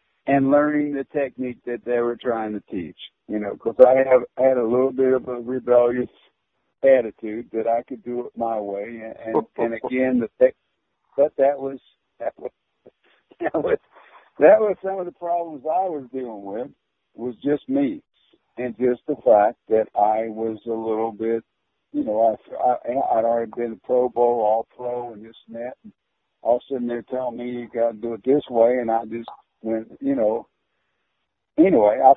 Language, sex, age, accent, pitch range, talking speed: English, male, 60-79, American, 115-145 Hz, 190 wpm